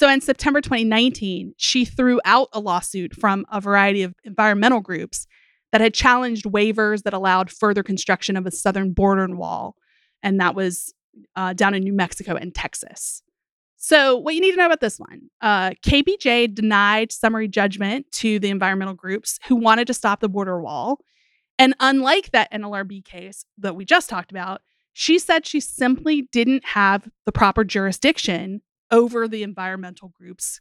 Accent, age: American, 30-49